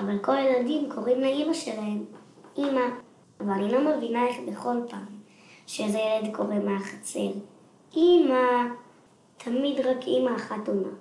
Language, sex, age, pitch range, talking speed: Hebrew, male, 20-39, 210-255 Hz, 130 wpm